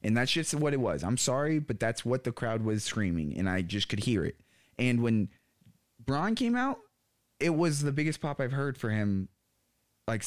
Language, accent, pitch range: English, American, 100-125 Hz